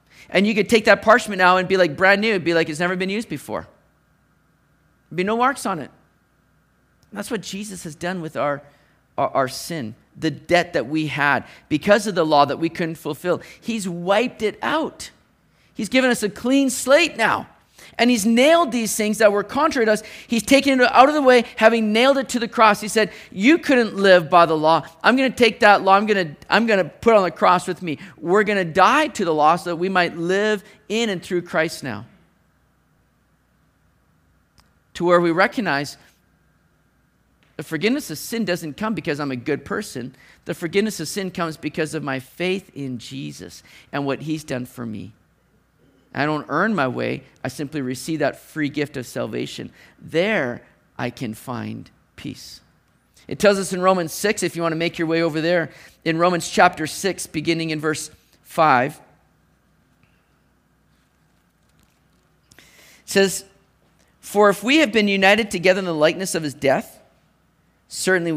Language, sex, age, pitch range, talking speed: English, male, 40-59, 155-210 Hz, 185 wpm